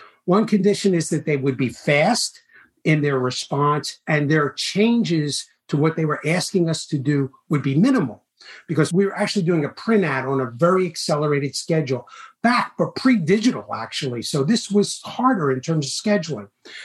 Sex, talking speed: male, 180 wpm